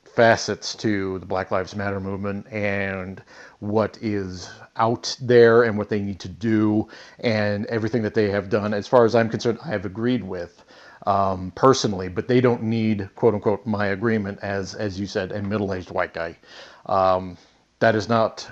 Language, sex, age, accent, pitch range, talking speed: English, male, 40-59, American, 100-115 Hz, 180 wpm